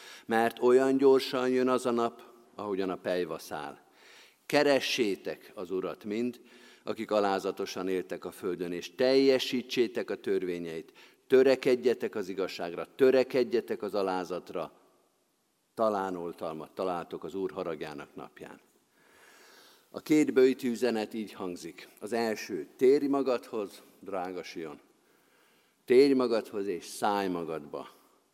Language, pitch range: Hungarian, 105-135 Hz